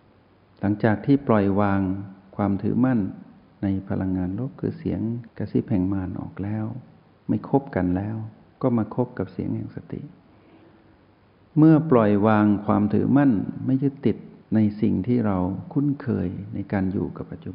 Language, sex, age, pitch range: Thai, male, 60-79, 95-120 Hz